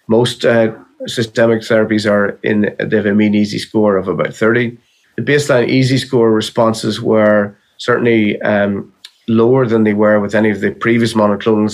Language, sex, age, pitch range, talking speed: English, male, 30-49, 105-115 Hz, 170 wpm